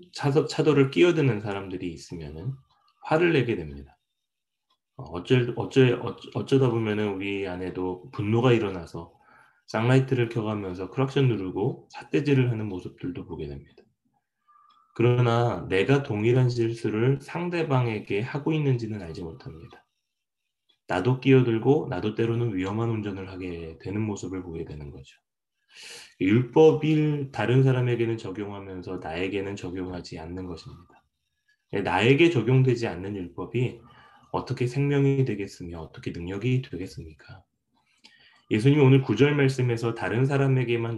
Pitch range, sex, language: 95-130 Hz, male, Korean